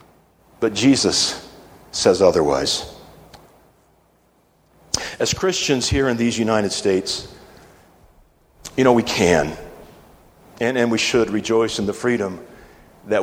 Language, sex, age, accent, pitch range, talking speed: English, male, 50-69, American, 105-130 Hz, 110 wpm